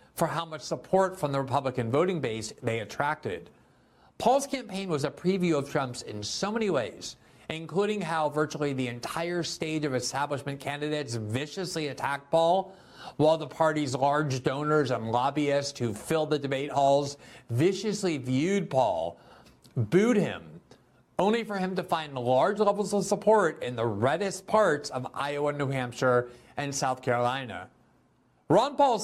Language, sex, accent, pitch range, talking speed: English, male, American, 130-165 Hz, 150 wpm